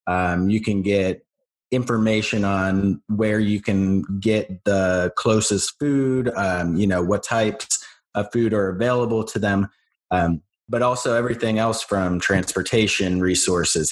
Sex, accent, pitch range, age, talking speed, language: male, American, 95-110 Hz, 30-49, 140 wpm, English